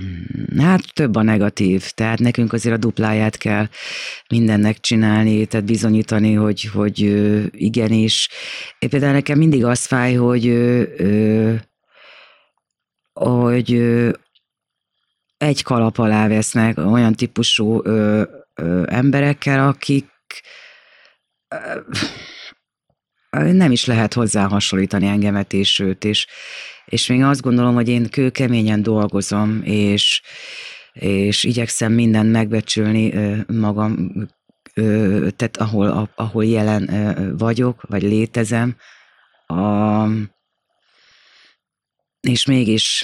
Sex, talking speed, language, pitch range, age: female, 90 wpm, Hungarian, 105-120 Hz, 30-49